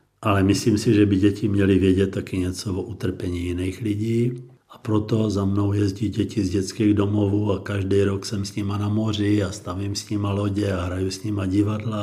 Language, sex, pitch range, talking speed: Czech, male, 95-125 Hz, 205 wpm